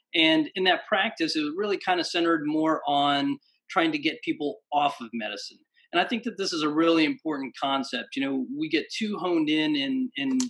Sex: male